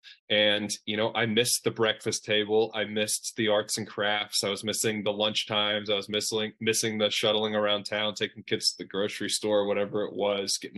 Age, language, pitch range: 20-39, English, 105-115 Hz